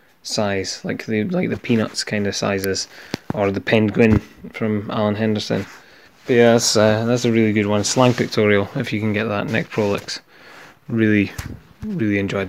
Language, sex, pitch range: English, male, 100-115 Hz